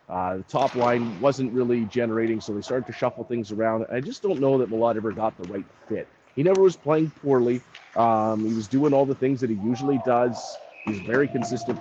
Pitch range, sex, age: 115-140 Hz, male, 30-49